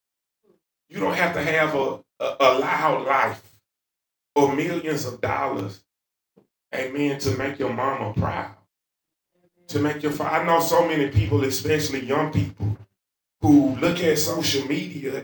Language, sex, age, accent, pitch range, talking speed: English, male, 30-49, American, 140-195 Hz, 140 wpm